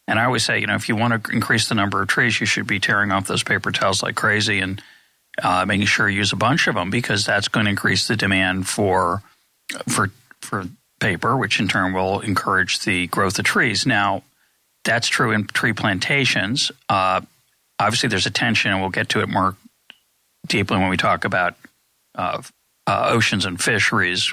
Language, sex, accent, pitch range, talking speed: English, male, American, 95-115 Hz, 200 wpm